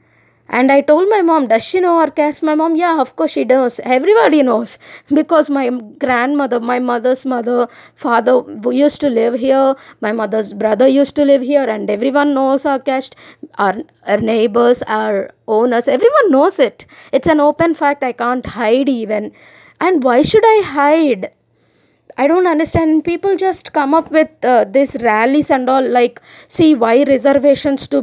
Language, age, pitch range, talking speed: English, 20-39, 250-300 Hz, 175 wpm